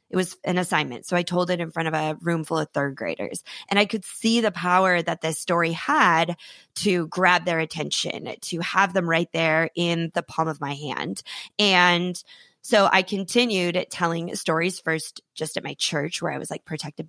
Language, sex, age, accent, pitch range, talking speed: English, female, 20-39, American, 165-200 Hz, 205 wpm